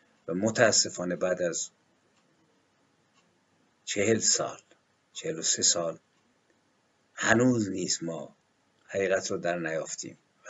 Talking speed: 95 wpm